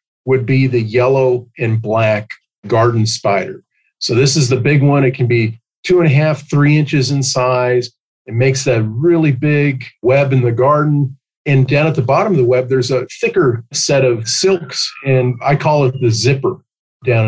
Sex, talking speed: male, 190 wpm